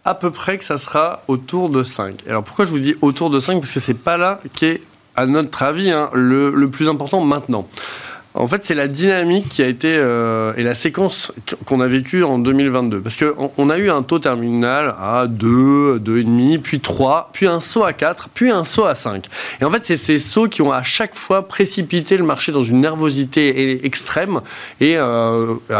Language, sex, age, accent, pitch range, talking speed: French, male, 20-39, French, 125-175 Hz, 215 wpm